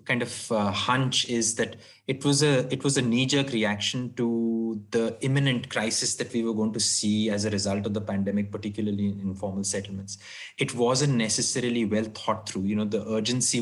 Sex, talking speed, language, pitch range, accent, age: male, 195 wpm, English, 105-120 Hz, Indian, 20-39